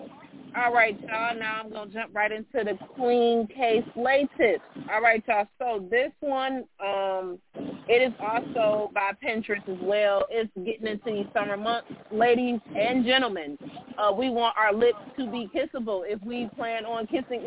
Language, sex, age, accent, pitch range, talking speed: English, female, 30-49, American, 205-250 Hz, 170 wpm